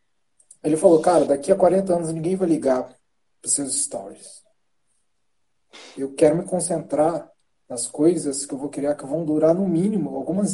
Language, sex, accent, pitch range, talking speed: Portuguese, male, Brazilian, 140-165 Hz, 170 wpm